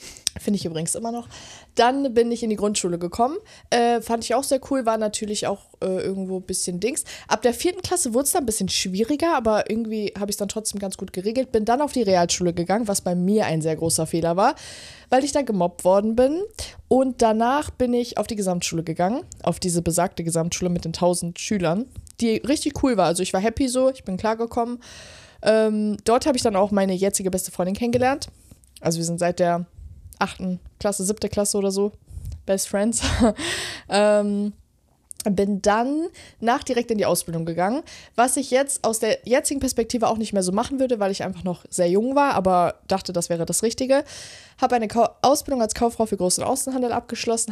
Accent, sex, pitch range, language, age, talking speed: German, female, 180-235 Hz, German, 20-39, 205 wpm